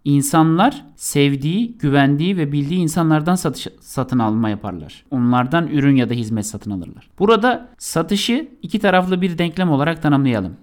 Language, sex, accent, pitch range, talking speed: Turkish, male, native, 140-185 Hz, 140 wpm